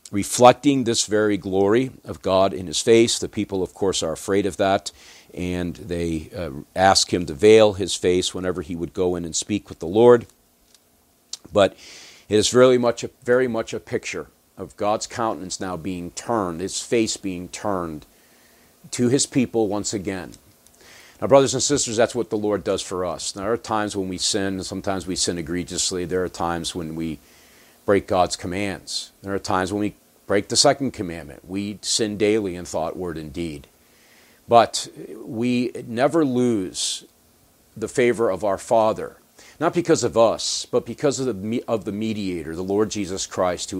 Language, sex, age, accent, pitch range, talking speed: English, male, 50-69, American, 90-115 Hz, 185 wpm